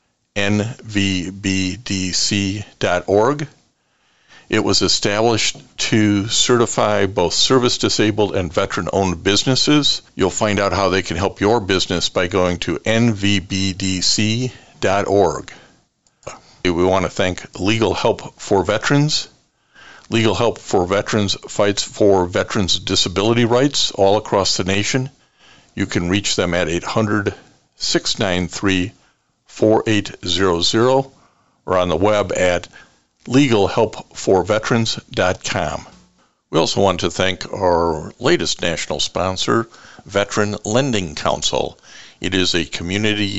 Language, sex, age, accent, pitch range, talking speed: English, male, 50-69, American, 95-115 Hz, 110 wpm